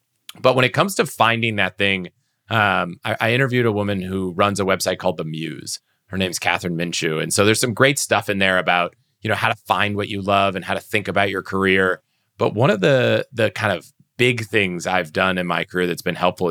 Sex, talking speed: male, 240 wpm